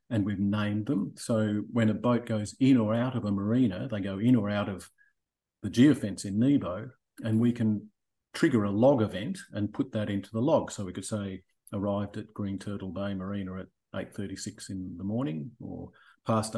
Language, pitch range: English, 95-110 Hz